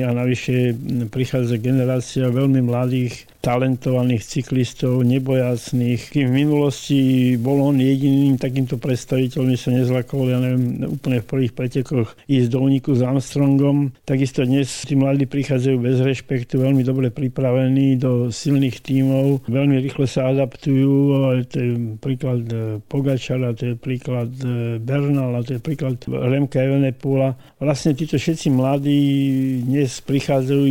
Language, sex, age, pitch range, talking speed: Slovak, male, 50-69, 125-135 Hz, 130 wpm